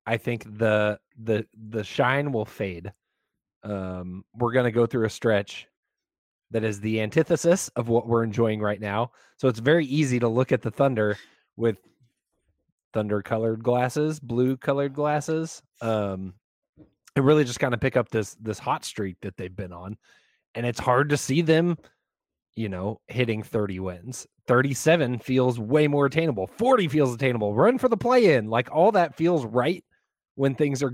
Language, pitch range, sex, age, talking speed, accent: English, 110-150 Hz, male, 20-39, 170 wpm, American